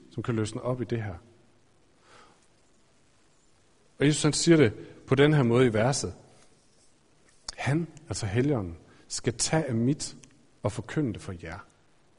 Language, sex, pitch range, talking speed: Danish, male, 110-160 Hz, 150 wpm